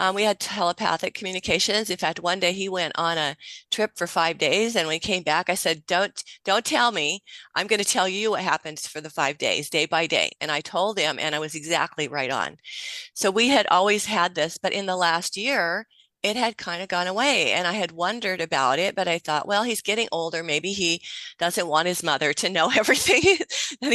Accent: American